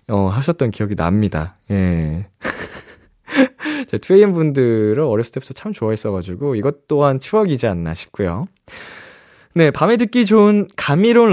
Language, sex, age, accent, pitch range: Korean, male, 20-39, native, 105-155 Hz